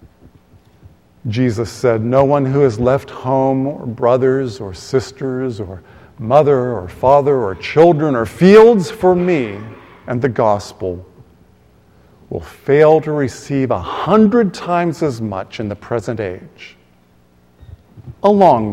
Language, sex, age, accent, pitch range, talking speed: English, male, 50-69, American, 105-155 Hz, 125 wpm